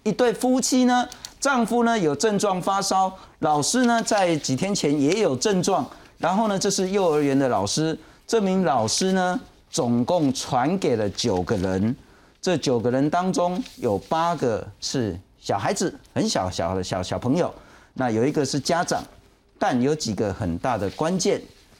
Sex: male